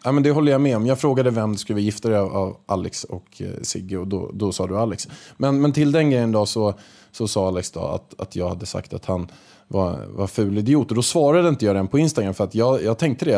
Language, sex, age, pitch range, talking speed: Swedish, male, 20-39, 95-130 Hz, 265 wpm